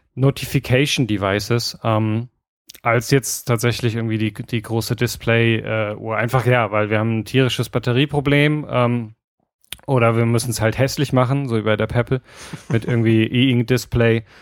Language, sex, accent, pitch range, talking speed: German, male, German, 110-125 Hz, 145 wpm